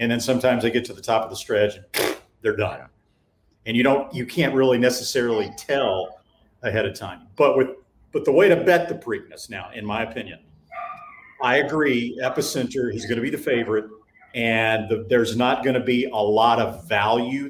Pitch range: 110-130 Hz